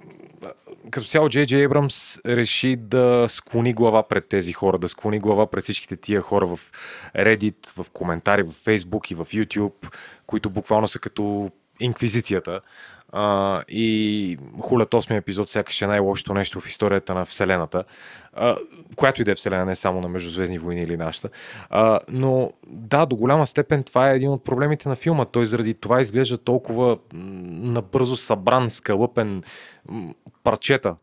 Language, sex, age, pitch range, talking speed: Bulgarian, male, 30-49, 100-130 Hz, 160 wpm